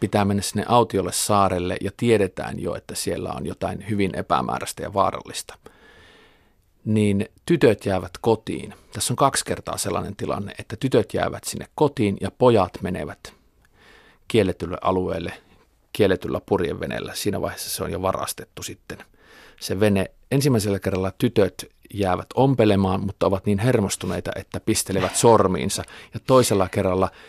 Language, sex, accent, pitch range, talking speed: Finnish, male, native, 95-115 Hz, 135 wpm